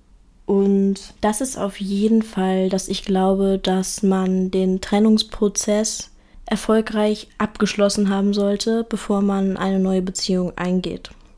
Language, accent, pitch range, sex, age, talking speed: German, German, 195-220 Hz, female, 20-39, 120 wpm